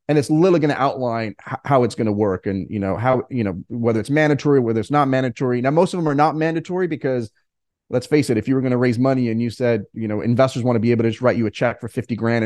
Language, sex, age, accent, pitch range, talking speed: English, male, 30-49, American, 115-135 Hz, 295 wpm